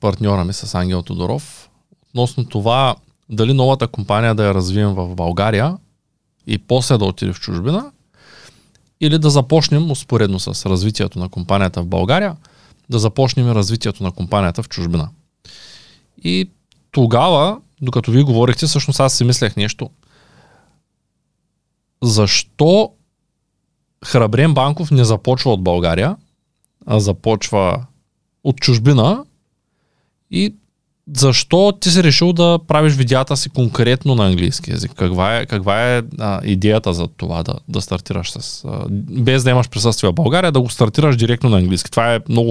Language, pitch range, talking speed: Bulgarian, 105-140 Hz, 135 wpm